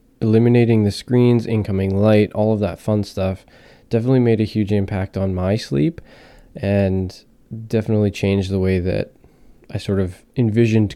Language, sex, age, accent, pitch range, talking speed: English, male, 20-39, American, 95-115 Hz, 155 wpm